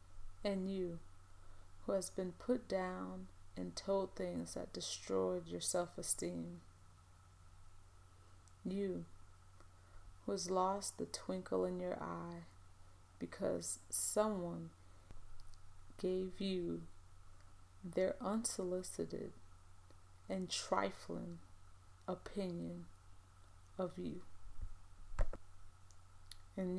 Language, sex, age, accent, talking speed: English, female, 30-49, American, 80 wpm